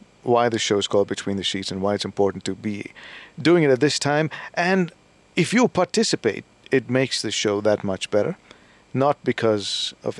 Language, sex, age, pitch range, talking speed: English, male, 50-69, 105-140 Hz, 195 wpm